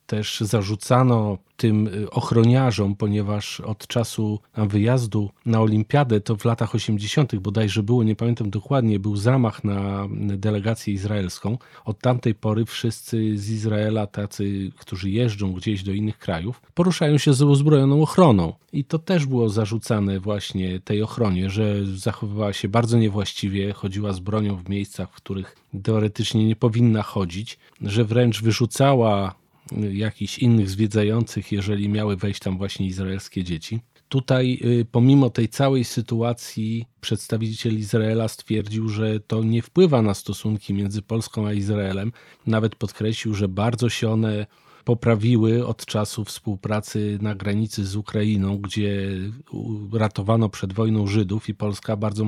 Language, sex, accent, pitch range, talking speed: Polish, male, native, 105-115 Hz, 135 wpm